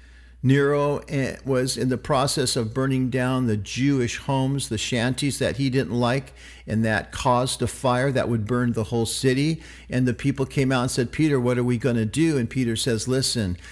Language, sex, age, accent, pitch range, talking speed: English, male, 50-69, American, 110-145 Hz, 200 wpm